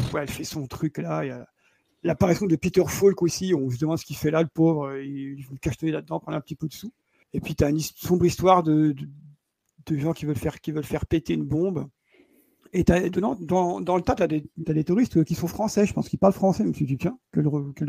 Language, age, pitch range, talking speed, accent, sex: French, 50-69, 150-180 Hz, 275 wpm, French, male